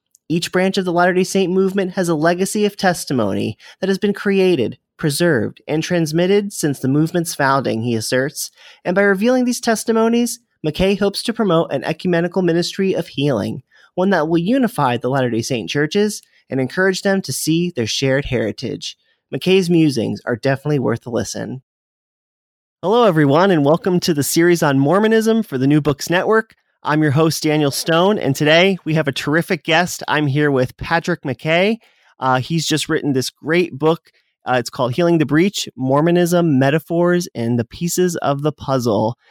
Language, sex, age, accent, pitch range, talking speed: English, male, 30-49, American, 135-180 Hz, 175 wpm